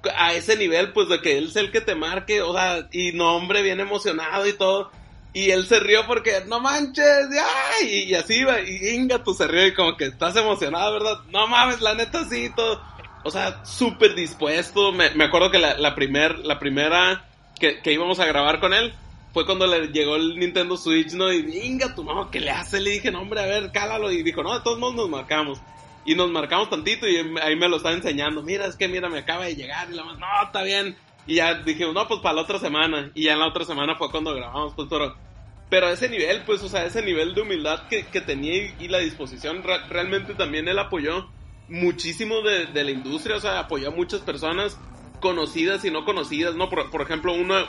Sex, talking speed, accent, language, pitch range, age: male, 230 wpm, Mexican, Spanish, 155-215 Hz, 30-49